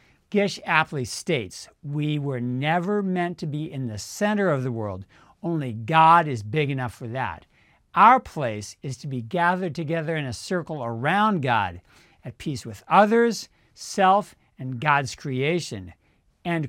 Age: 60-79